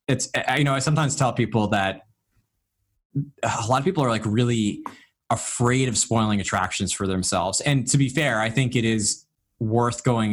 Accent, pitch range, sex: American, 100-120 Hz, male